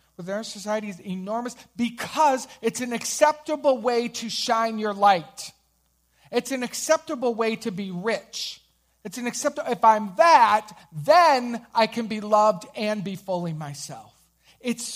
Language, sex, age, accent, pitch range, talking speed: English, male, 40-59, American, 165-235 Hz, 150 wpm